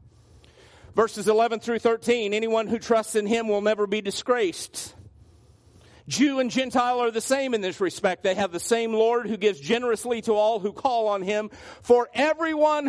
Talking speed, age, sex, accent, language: 175 wpm, 50-69, male, American, English